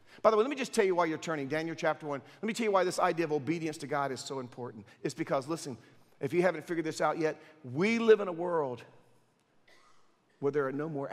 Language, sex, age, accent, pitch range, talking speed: English, male, 50-69, American, 150-200 Hz, 260 wpm